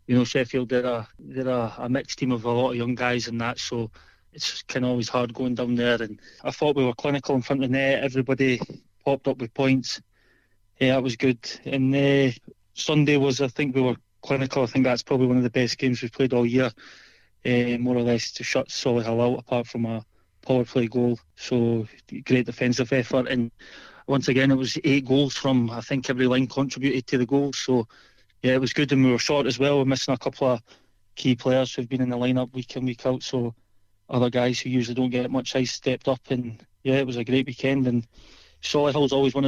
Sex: male